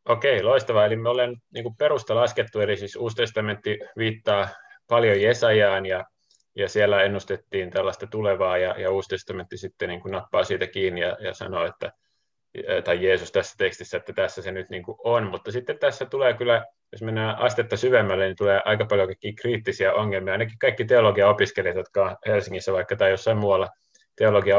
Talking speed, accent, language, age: 155 wpm, native, Finnish, 30-49